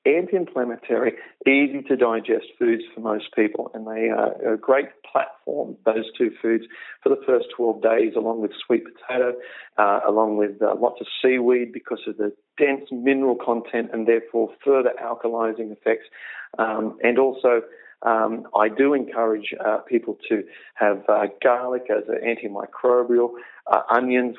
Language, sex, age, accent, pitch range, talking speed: English, male, 40-59, Australian, 115-140 Hz, 150 wpm